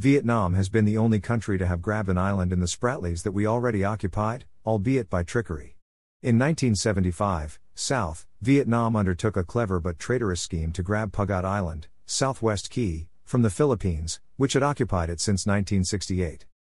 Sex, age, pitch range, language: male, 50-69, 90-115 Hz, English